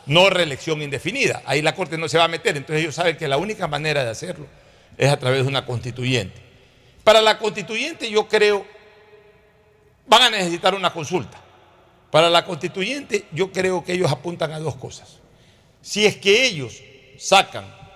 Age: 60-79